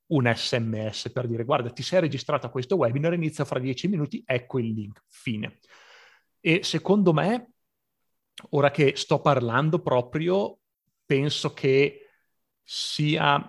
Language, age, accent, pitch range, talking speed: Italian, 30-49, native, 120-150 Hz, 135 wpm